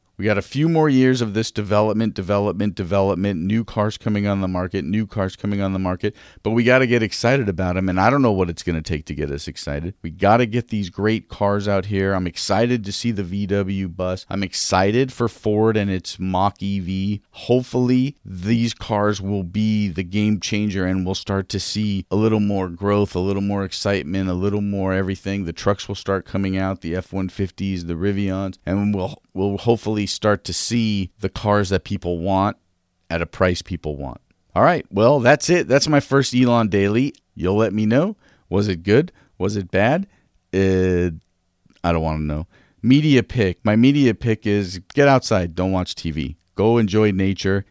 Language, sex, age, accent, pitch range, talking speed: English, male, 40-59, American, 95-110 Hz, 200 wpm